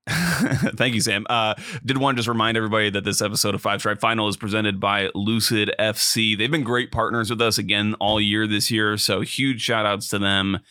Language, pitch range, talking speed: English, 105-120 Hz, 220 wpm